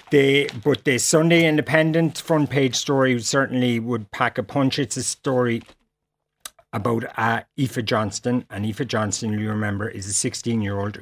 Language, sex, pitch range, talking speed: English, male, 105-125 Hz, 155 wpm